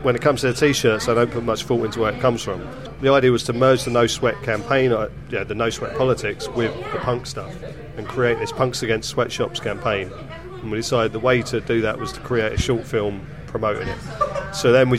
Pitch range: 115-135 Hz